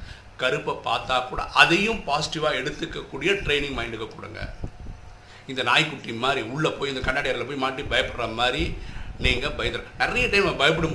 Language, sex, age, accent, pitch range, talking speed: Tamil, male, 50-69, native, 105-145 Hz, 140 wpm